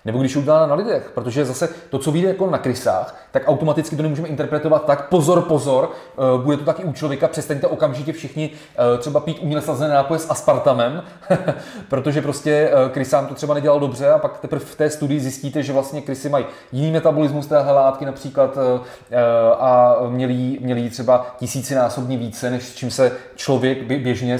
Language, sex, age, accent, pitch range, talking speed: Czech, male, 20-39, native, 125-150 Hz, 175 wpm